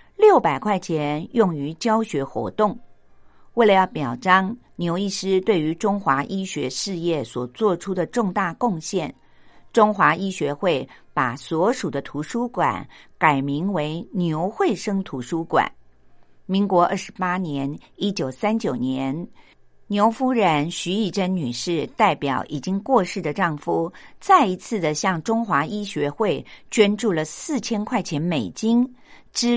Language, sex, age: Chinese, female, 50-69